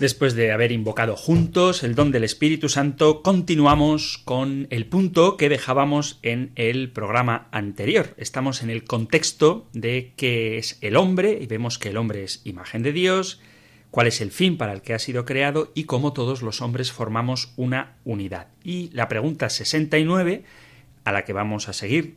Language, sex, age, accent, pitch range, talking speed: Spanish, male, 30-49, Spanish, 115-150 Hz, 180 wpm